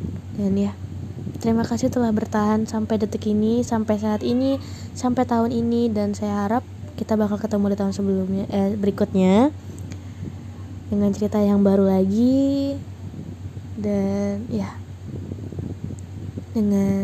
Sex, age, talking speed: female, 20-39, 120 wpm